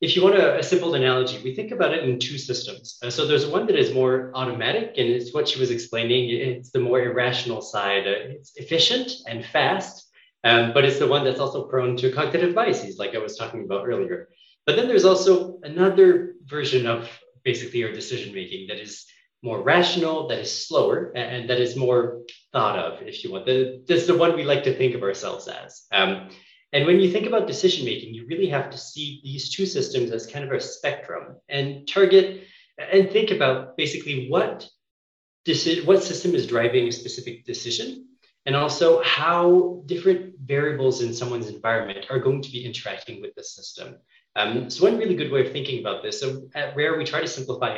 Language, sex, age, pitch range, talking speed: English, male, 30-49, 125-185 Hz, 195 wpm